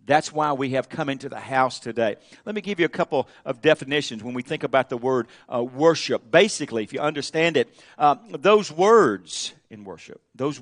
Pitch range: 140-190 Hz